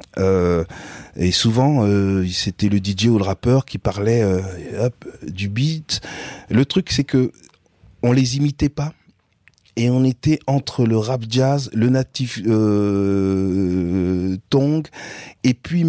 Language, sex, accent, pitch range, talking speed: French, male, French, 95-125 Hz, 140 wpm